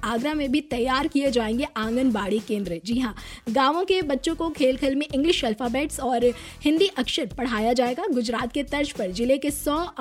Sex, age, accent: female, 20-39, native